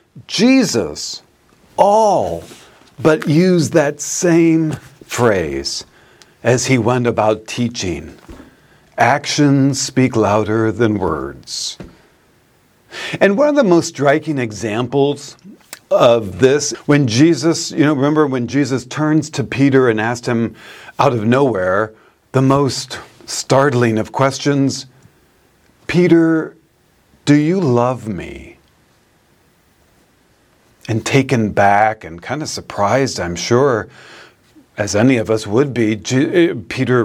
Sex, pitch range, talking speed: male, 110-150 Hz, 110 wpm